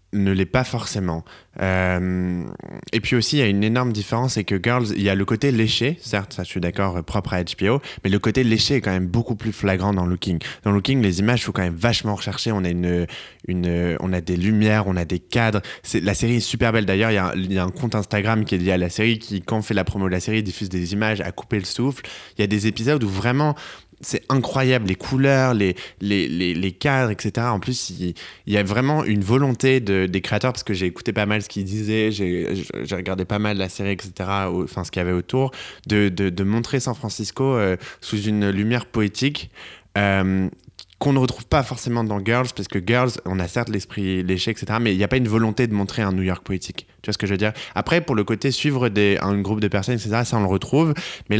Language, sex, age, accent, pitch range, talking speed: French, male, 20-39, French, 95-120 Hz, 250 wpm